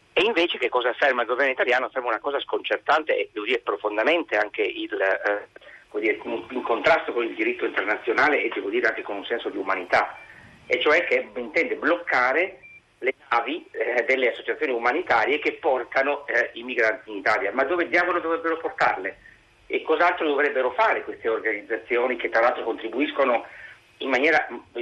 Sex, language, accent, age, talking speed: male, Italian, native, 50-69, 165 wpm